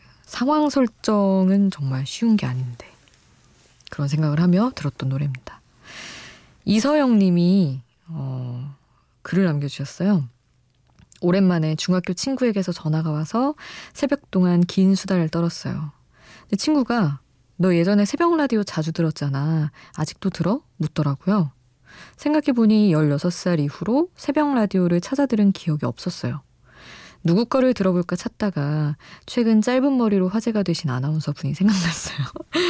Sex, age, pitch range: female, 20-39, 150-210 Hz